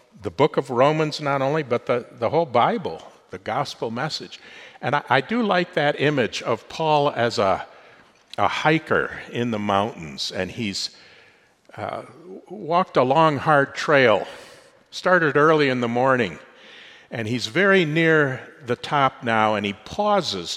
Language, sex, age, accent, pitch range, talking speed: English, male, 50-69, American, 115-160 Hz, 155 wpm